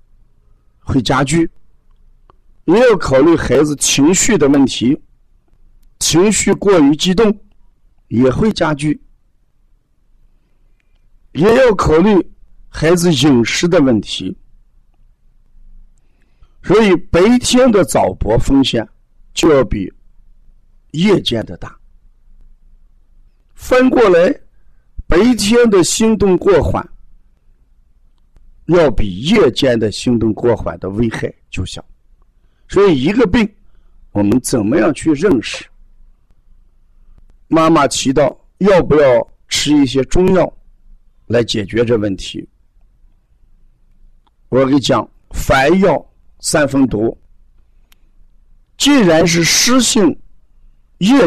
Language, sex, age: Chinese, male, 50-69